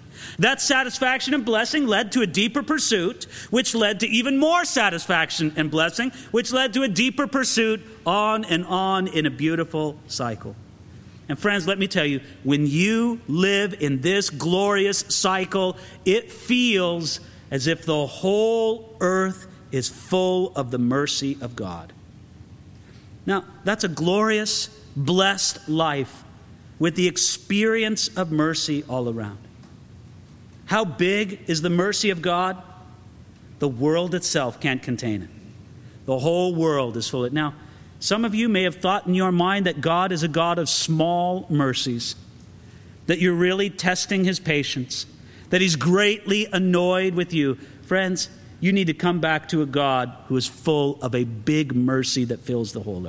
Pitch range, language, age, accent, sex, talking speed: 130-200 Hz, English, 50-69, American, male, 160 wpm